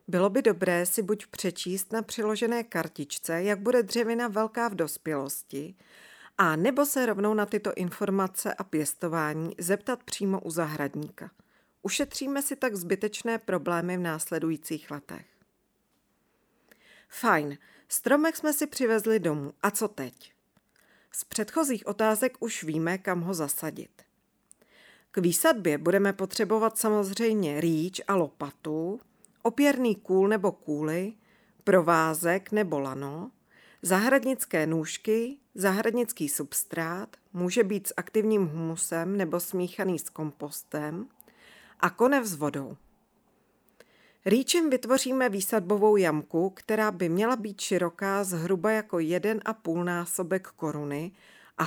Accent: native